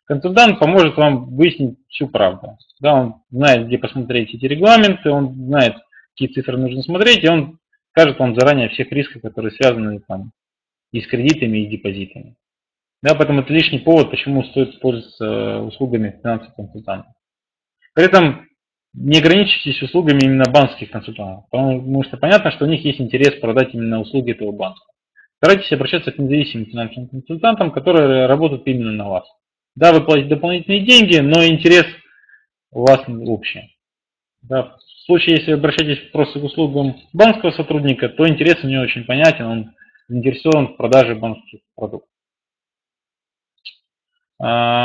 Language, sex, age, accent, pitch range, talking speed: Russian, male, 20-39, native, 120-160 Hz, 145 wpm